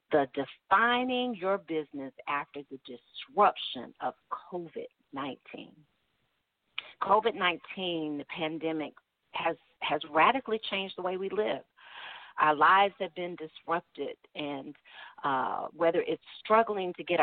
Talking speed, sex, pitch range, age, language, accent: 110 wpm, female, 160-215 Hz, 50-69, English, American